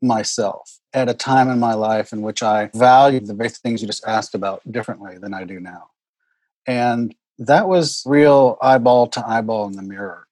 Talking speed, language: 185 wpm, English